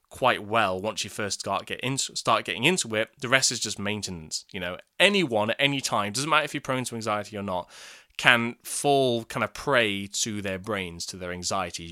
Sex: male